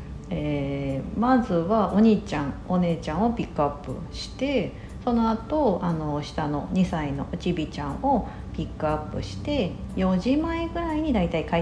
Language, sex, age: Japanese, female, 50-69